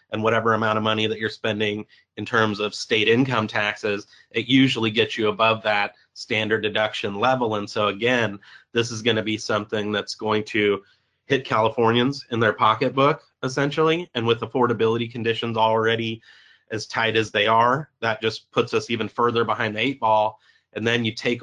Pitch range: 110-120 Hz